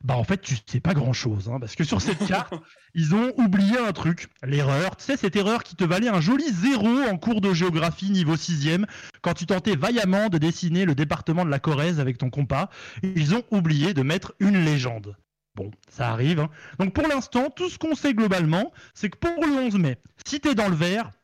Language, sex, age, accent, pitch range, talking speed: French, male, 20-39, French, 145-215 Hz, 225 wpm